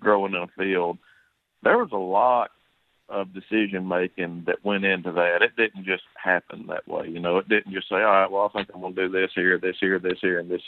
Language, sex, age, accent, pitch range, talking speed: English, male, 40-59, American, 90-105 Hz, 240 wpm